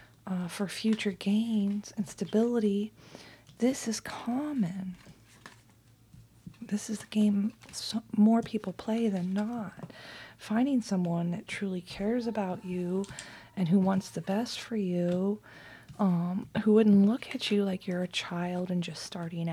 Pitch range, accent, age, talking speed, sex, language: 170-205 Hz, American, 30-49, 140 wpm, female, English